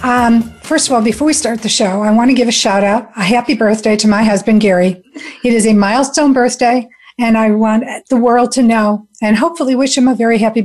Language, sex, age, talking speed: English, female, 50-69, 235 wpm